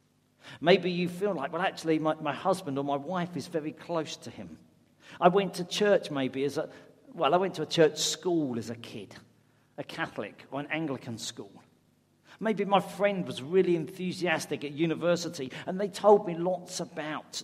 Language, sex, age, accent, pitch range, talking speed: English, male, 50-69, British, 140-180 Hz, 185 wpm